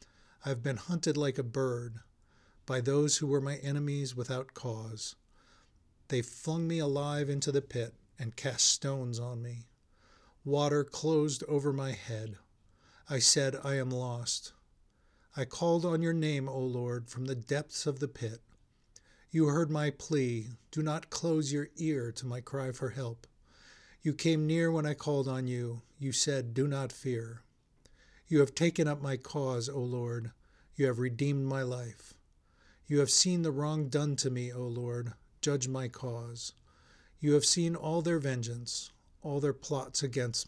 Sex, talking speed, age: male, 165 wpm, 50-69